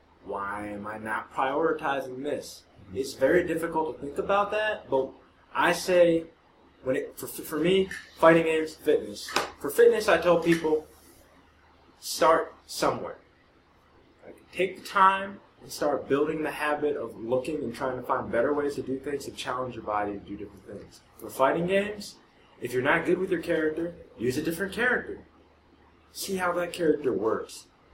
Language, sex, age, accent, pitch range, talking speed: English, male, 20-39, American, 120-175 Hz, 170 wpm